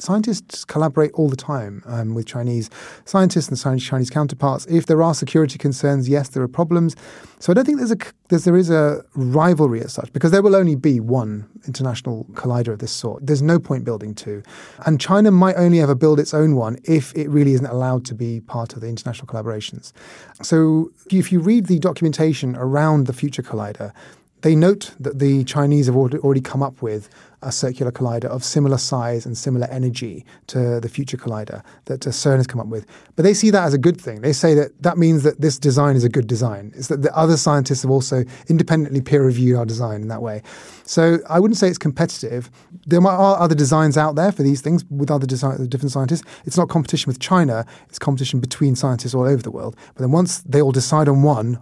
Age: 30-49